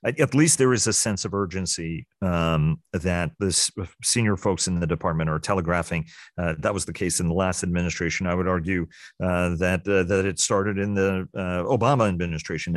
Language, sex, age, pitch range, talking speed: English, male, 40-59, 85-100 Hz, 195 wpm